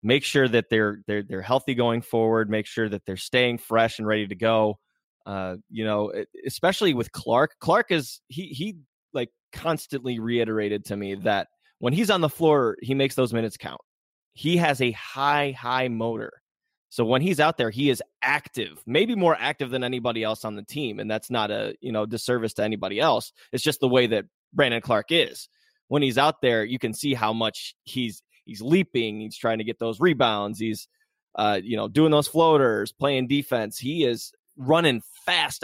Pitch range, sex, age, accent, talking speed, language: 110-145 Hz, male, 20-39, American, 195 wpm, English